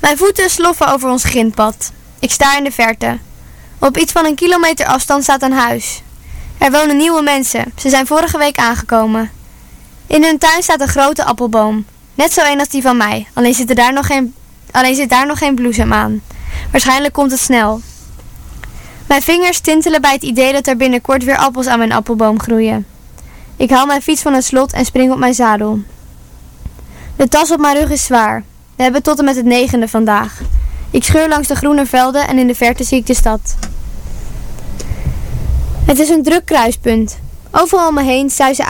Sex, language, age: female, English, 20-39